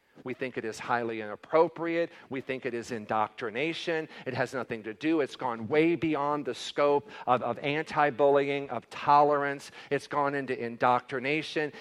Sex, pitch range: male, 130-155 Hz